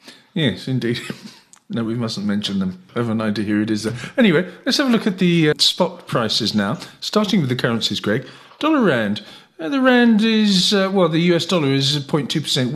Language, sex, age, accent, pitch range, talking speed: English, male, 50-69, British, 135-190 Hz, 200 wpm